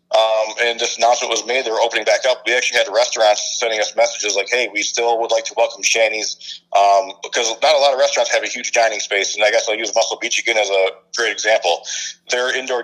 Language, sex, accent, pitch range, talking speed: English, male, American, 105-125 Hz, 250 wpm